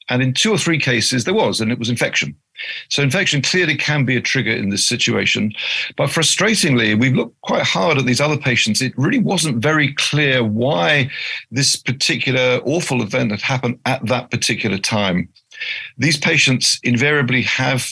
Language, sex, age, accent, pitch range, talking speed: English, male, 50-69, British, 120-140 Hz, 175 wpm